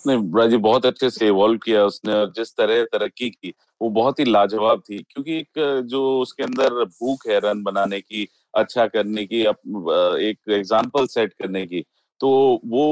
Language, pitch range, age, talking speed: Hindi, 105-120 Hz, 30-49, 175 wpm